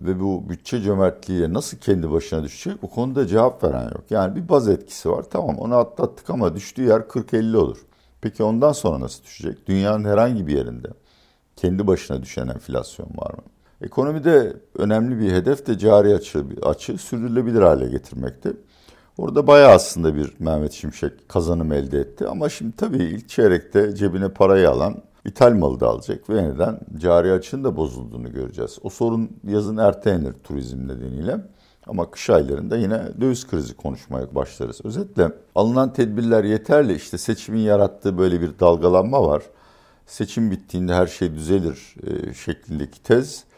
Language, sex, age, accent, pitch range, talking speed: Turkish, male, 60-79, native, 80-110 Hz, 155 wpm